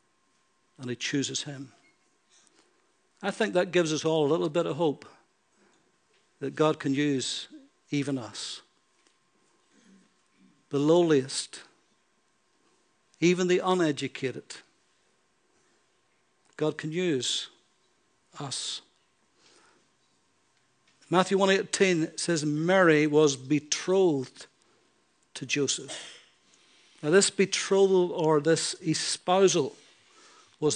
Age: 60-79